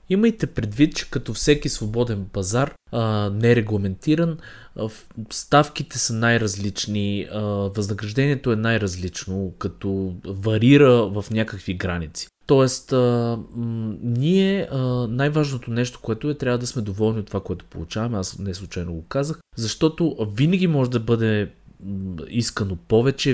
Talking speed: 115 wpm